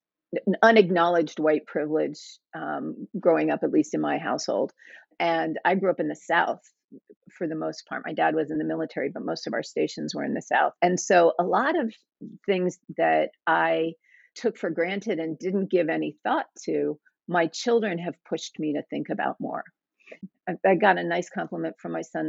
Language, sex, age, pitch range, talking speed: English, female, 40-59, 160-210 Hz, 195 wpm